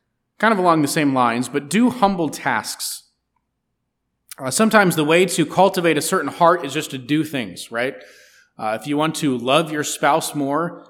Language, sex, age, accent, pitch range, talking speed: English, male, 30-49, American, 140-180 Hz, 185 wpm